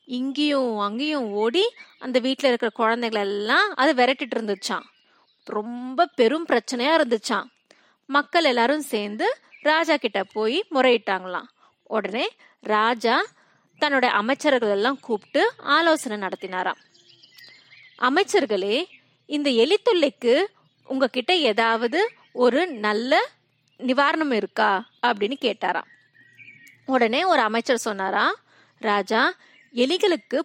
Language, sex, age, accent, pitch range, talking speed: Tamil, female, 20-39, native, 215-310 Hz, 60 wpm